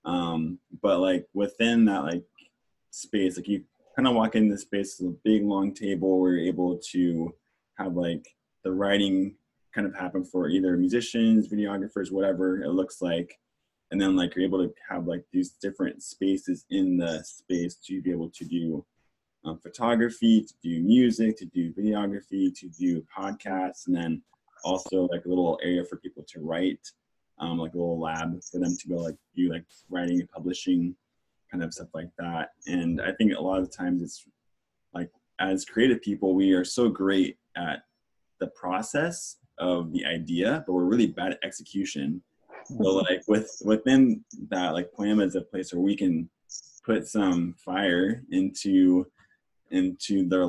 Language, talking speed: English, 175 wpm